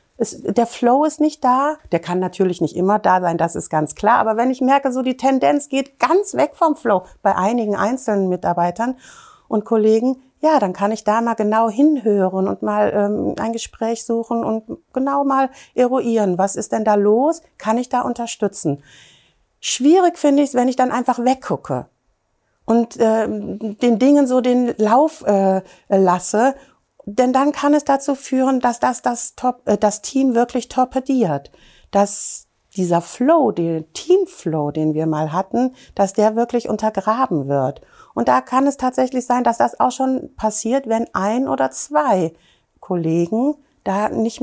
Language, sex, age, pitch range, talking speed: German, female, 60-79, 200-265 Hz, 170 wpm